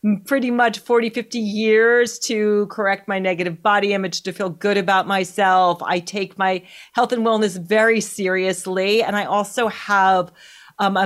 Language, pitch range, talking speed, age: English, 190-230 Hz, 165 wpm, 40-59